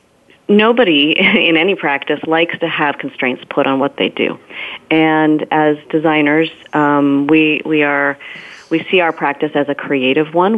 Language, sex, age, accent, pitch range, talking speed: English, female, 30-49, American, 145-175 Hz, 160 wpm